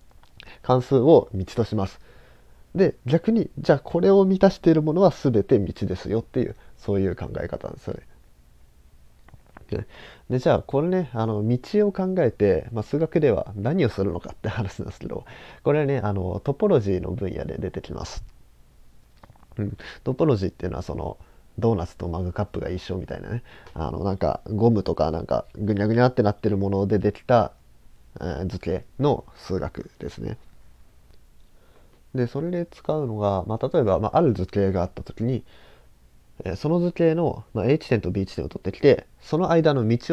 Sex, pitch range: male, 90-140 Hz